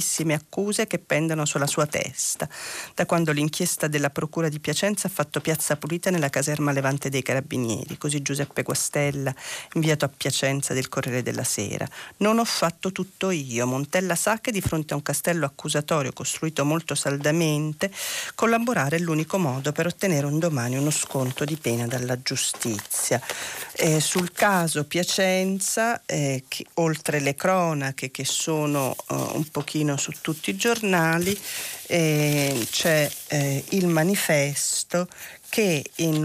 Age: 40-59